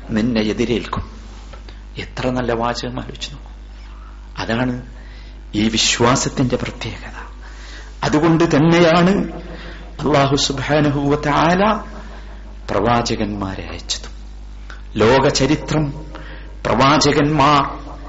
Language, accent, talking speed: Malayalam, native, 65 wpm